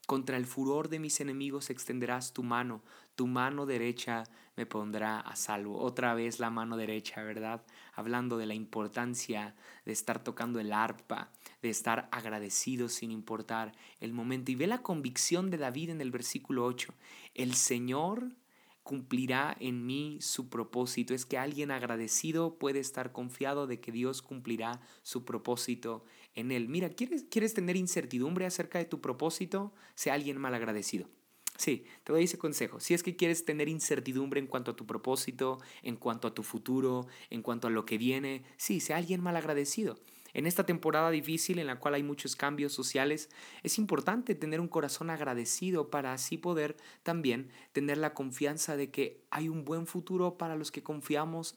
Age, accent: 30-49, Mexican